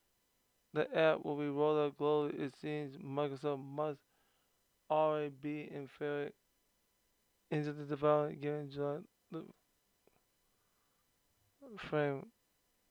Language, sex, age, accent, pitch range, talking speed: English, male, 20-39, American, 135-150 Hz, 100 wpm